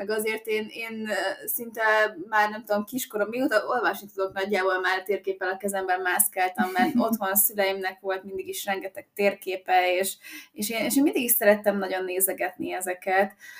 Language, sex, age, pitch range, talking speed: Hungarian, female, 20-39, 190-225 Hz, 170 wpm